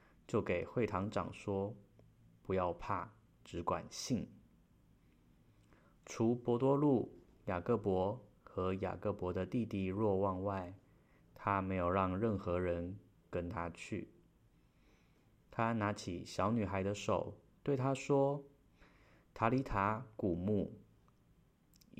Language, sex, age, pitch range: Chinese, male, 20-39, 90-115 Hz